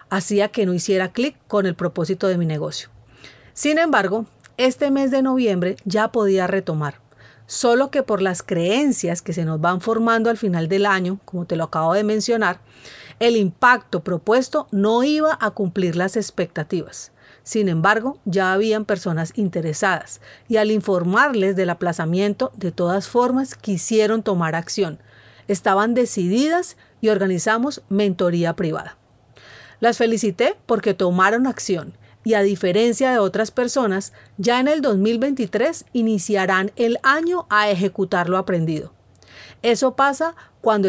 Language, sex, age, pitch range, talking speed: Spanish, female, 40-59, 180-230 Hz, 140 wpm